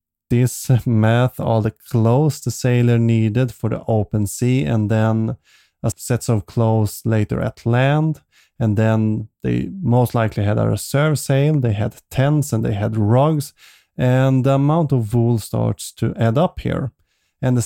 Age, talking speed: 30-49, 165 wpm